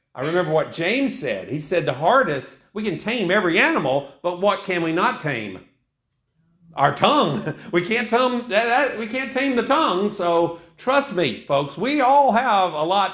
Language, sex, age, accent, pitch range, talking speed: English, male, 50-69, American, 155-225 Hz, 185 wpm